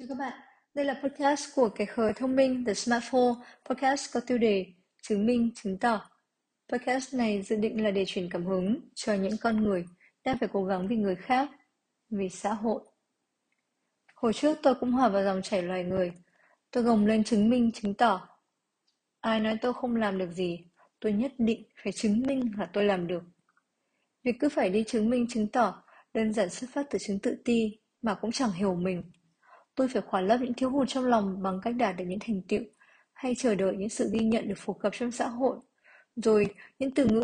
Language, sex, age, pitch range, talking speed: Vietnamese, female, 20-39, 205-255 Hz, 215 wpm